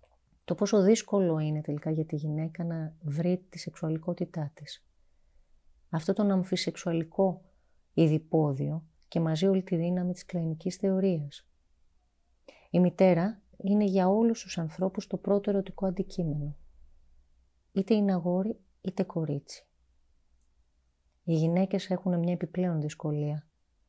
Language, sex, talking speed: Greek, female, 120 wpm